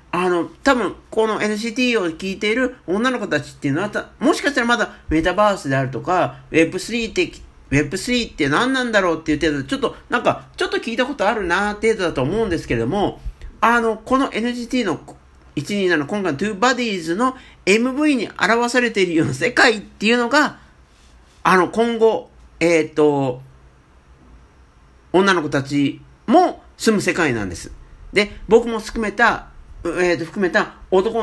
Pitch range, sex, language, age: 135-225 Hz, male, Japanese, 50-69